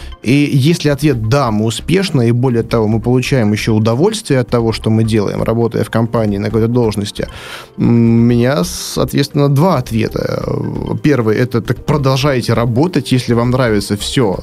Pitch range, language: 115-140 Hz, Russian